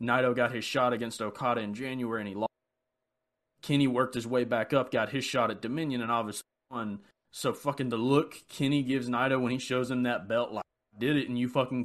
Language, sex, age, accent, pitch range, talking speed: English, male, 20-39, American, 115-140 Hz, 230 wpm